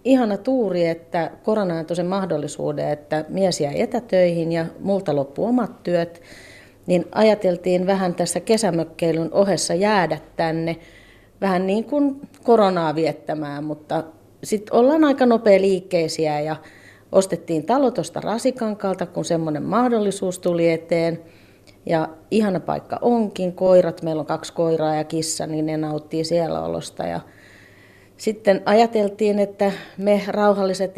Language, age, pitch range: Finnish, 30-49, 160-205 Hz